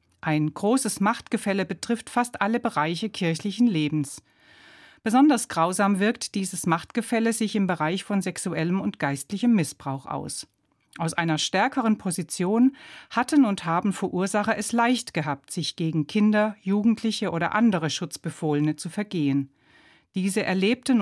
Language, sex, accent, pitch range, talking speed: German, female, German, 155-220 Hz, 130 wpm